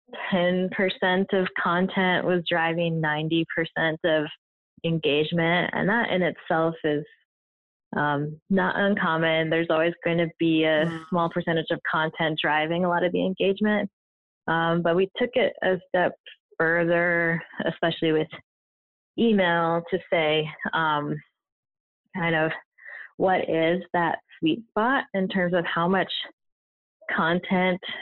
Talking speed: 125 wpm